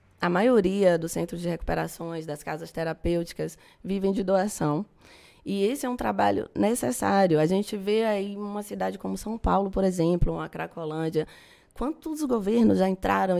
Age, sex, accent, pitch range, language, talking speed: 20-39, female, Brazilian, 165-225 Hz, Portuguese, 165 wpm